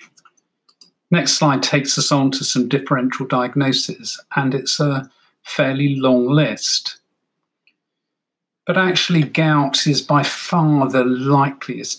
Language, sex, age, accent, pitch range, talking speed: English, male, 40-59, British, 135-165 Hz, 115 wpm